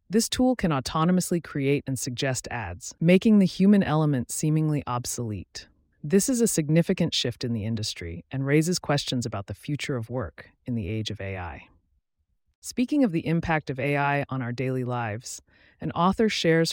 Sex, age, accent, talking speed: female, 30-49, American, 170 wpm